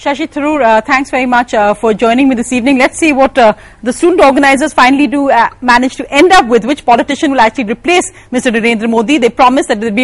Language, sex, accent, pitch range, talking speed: English, female, Indian, 250-315 Hz, 245 wpm